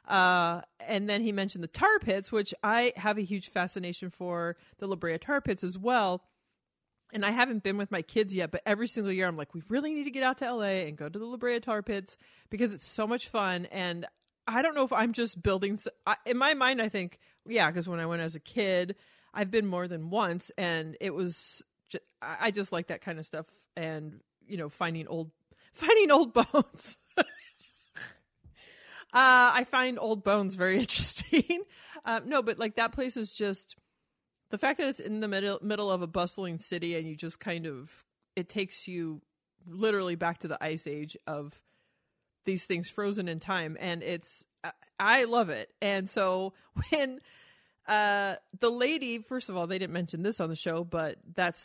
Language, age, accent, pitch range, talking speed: English, 30-49, American, 175-230 Hz, 200 wpm